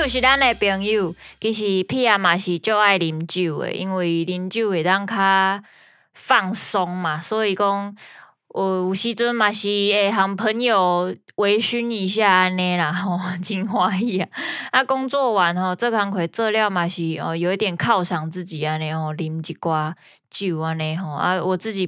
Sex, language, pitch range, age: female, Chinese, 175-230 Hz, 20-39